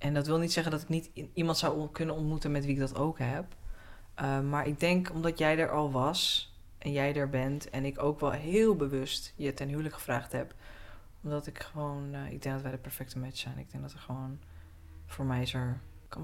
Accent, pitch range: Dutch, 135-165 Hz